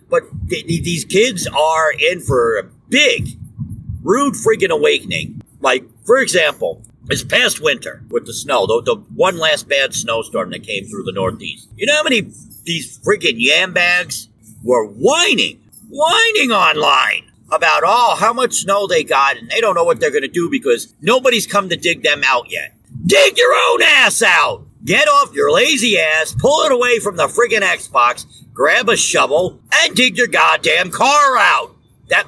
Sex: male